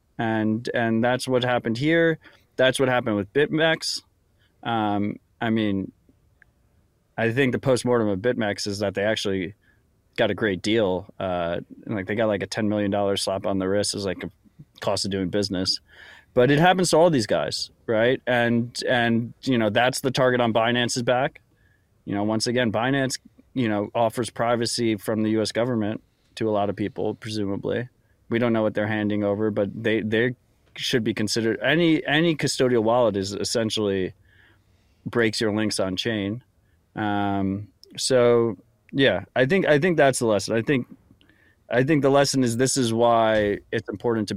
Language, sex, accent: English, male, American